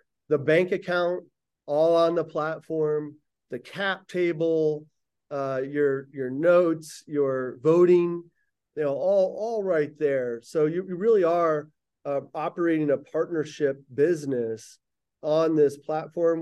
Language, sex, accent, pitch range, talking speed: English, male, American, 145-175 Hz, 130 wpm